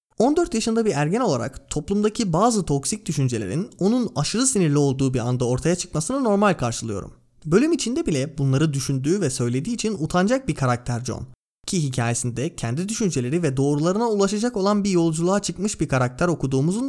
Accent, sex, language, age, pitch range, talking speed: native, male, Turkish, 30-49, 130-210 Hz, 160 wpm